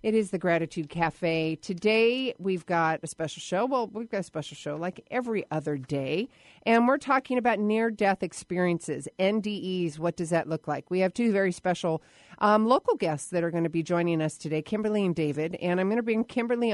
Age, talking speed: 40-59, 210 wpm